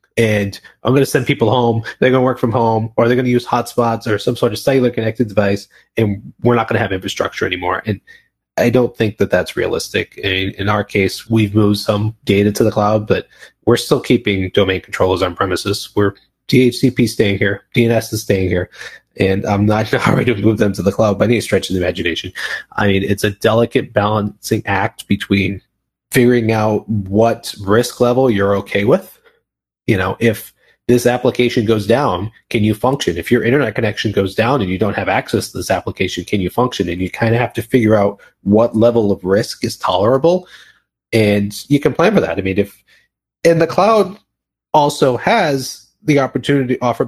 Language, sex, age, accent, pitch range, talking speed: English, male, 20-39, American, 100-125 Hz, 205 wpm